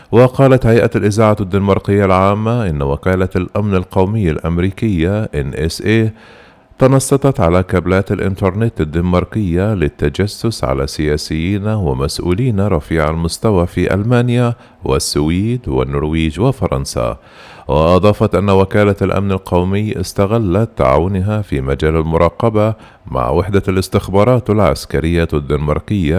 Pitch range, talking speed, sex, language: 85-110 Hz, 95 wpm, male, Arabic